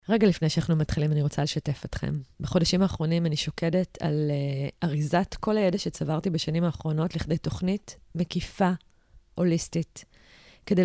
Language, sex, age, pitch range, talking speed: Hebrew, female, 20-39, 160-185 Hz, 140 wpm